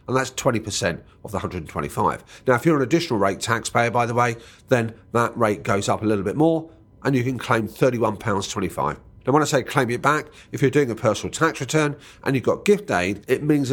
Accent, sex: British, male